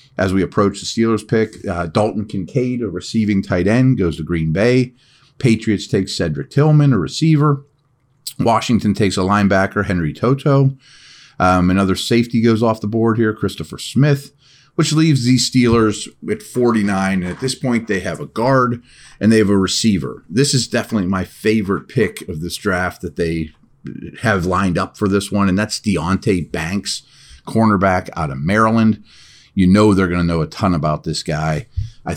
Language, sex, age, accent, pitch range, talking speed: English, male, 40-59, American, 95-125 Hz, 175 wpm